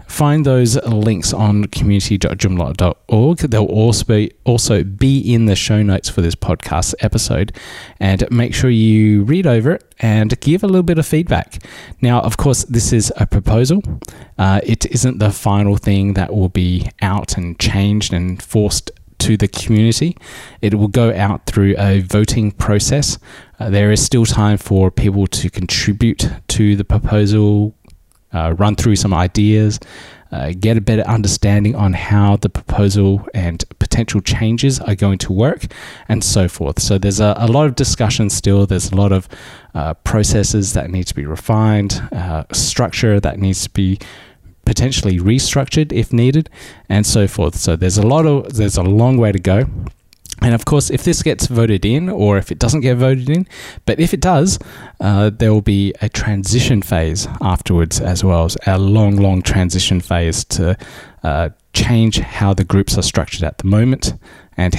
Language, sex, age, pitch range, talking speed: English, male, 20-39, 95-115 Hz, 175 wpm